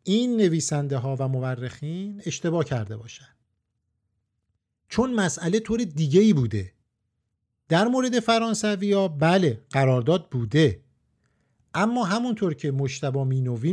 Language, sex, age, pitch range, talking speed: Persian, male, 50-69, 135-185 Hz, 115 wpm